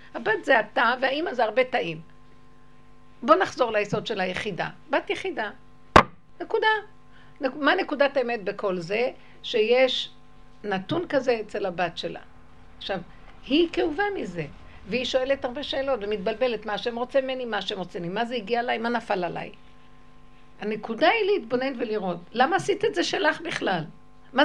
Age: 60-79